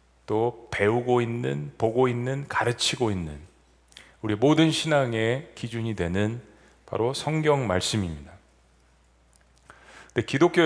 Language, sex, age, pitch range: Korean, male, 40-59, 95-130 Hz